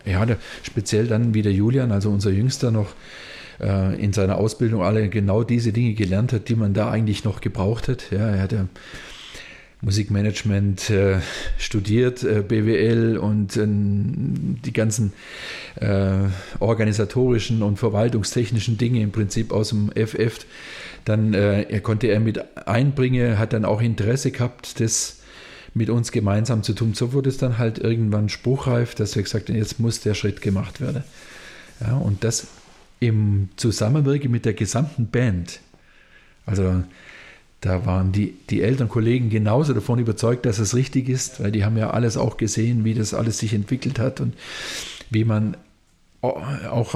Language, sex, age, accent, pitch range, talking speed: German, male, 40-59, German, 105-120 Hz, 150 wpm